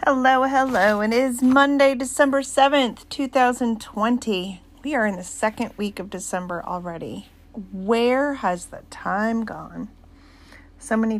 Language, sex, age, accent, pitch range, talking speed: English, female, 40-59, American, 175-225 Hz, 130 wpm